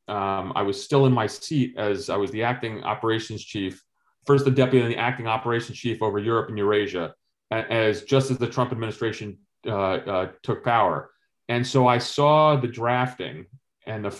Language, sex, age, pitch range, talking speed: English, male, 30-49, 105-130 Hz, 190 wpm